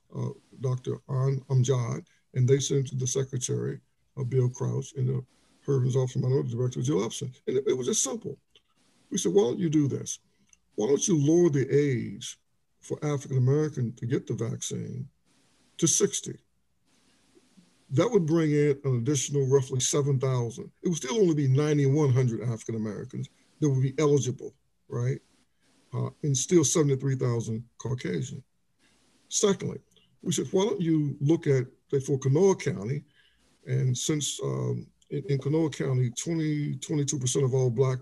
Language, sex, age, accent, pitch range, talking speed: English, male, 60-79, American, 130-160 Hz, 160 wpm